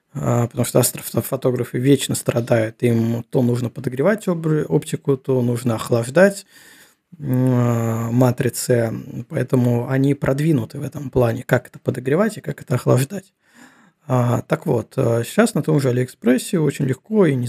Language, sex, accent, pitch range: Russian, male, native, 125-155 Hz